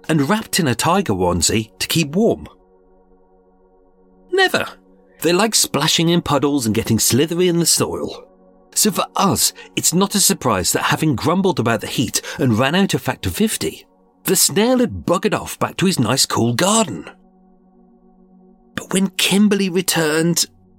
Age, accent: 40-59, British